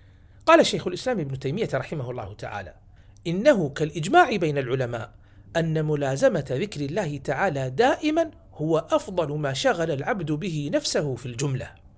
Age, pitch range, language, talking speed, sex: 50-69, 115-185 Hz, Arabic, 135 wpm, male